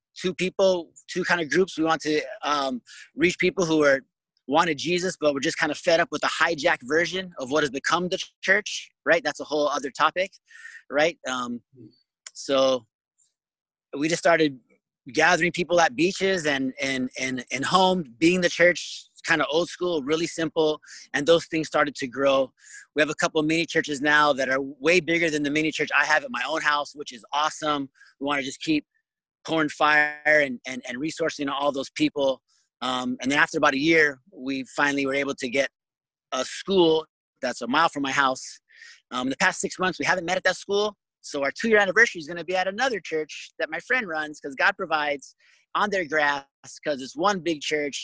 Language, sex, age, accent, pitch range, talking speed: English, male, 30-49, American, 140-180 Hz, 210 wpm